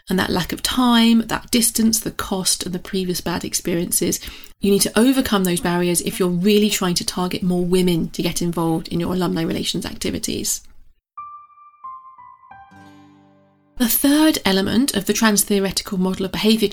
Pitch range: 180-240 Hz